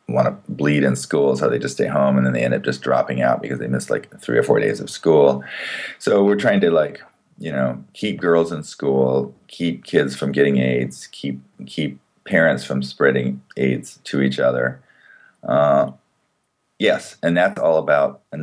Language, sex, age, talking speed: English, male, 30-49, 195 wpm